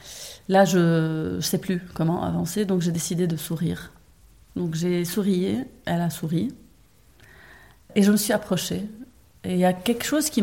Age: 30-49